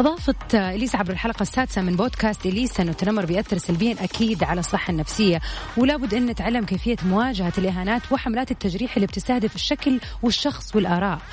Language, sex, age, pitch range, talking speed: Arabic, female, 30-49, 185-245 Hz, 160 wpm